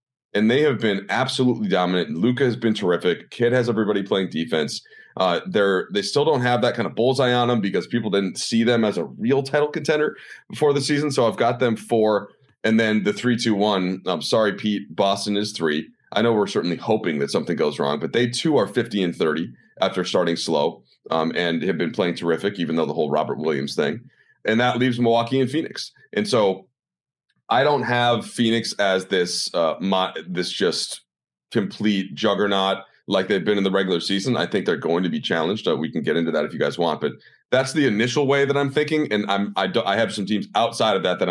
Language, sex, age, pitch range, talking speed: English, male, 30-49, 90-120 Hz, 220 wpm